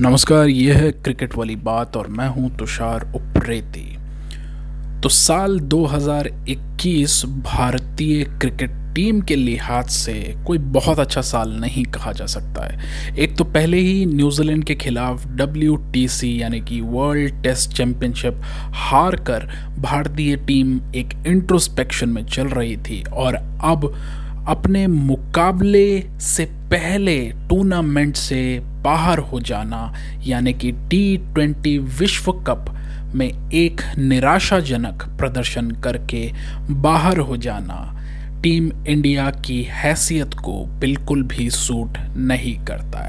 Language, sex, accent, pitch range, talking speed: Hindi, male, native, 125-155 Hz, 120 wpm